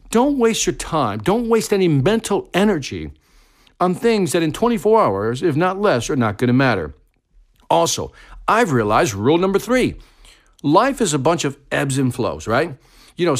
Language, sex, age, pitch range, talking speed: English, male, 50-69, 125-200 Hz, 180 wpm